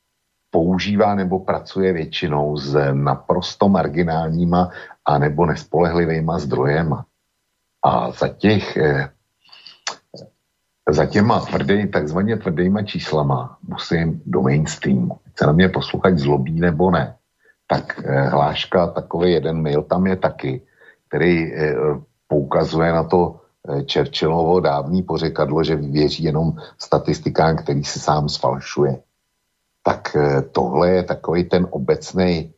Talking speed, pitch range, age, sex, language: 110 wpm, 70-85 Hz, 60-79, male, Slovak